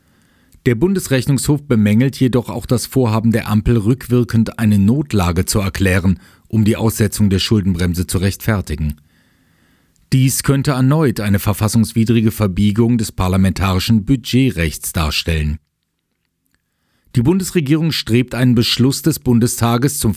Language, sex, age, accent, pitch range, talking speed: German, male, 40-59, German, 95-125 Hz, 115 wpm